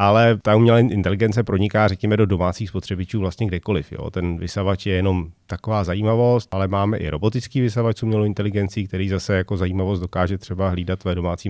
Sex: male